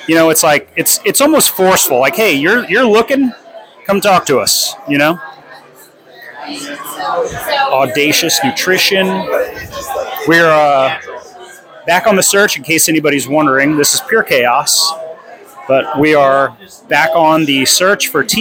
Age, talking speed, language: 30-49, 145 wpm, English